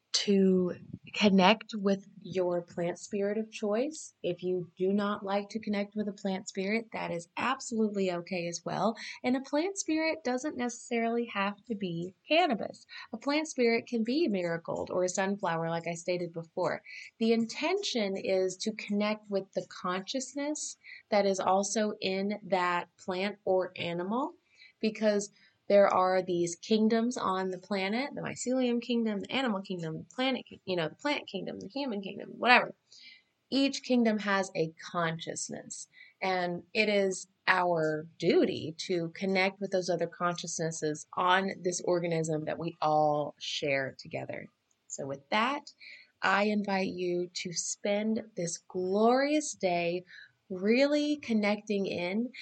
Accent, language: American, English